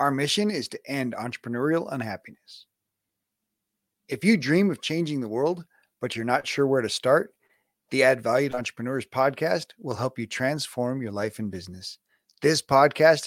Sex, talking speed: male, 165 wpm